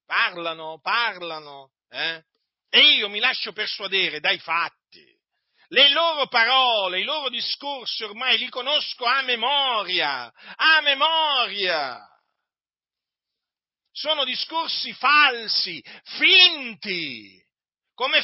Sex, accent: male, native